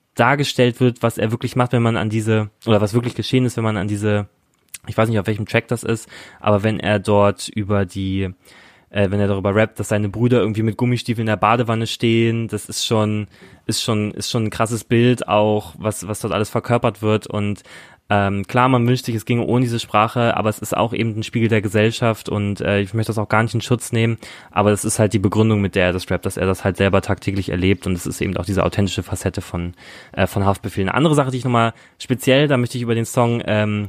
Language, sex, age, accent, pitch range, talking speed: German, male, 20-39, German, 100-115 Hz, 245 wpm